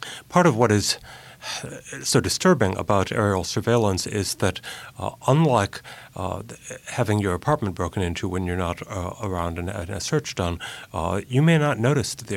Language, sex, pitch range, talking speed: English, male, 95-125 Hz, 175 wpm